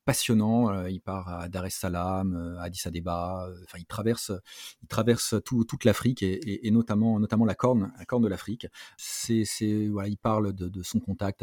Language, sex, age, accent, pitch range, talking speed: French, male, 30-49, French, 95-115 Hz, 195 wpm